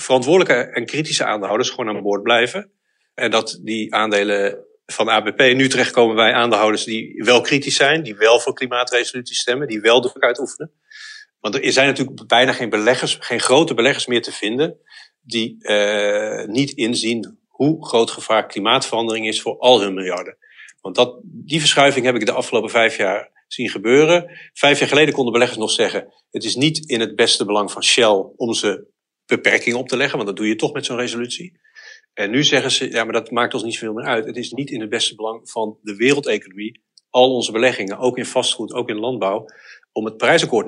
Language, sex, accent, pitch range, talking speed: Dutch, male, Dutch, 110-145 Hz, 200 wpm